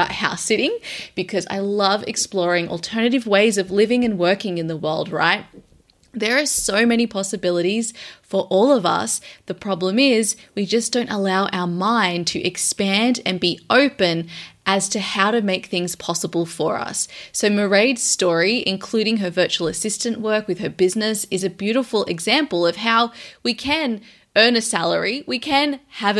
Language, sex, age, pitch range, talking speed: English, female, 20-39, 180-225 Hz, 165 wpm